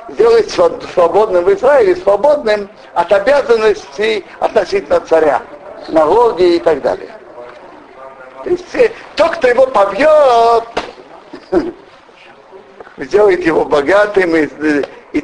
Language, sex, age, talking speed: Russian, male, 60-79, 90 wpm